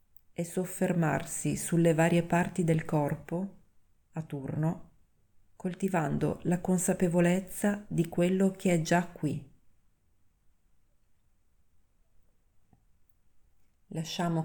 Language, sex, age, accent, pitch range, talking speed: Italian, female, 30-49, native, 145-170 Hz, 80 wpm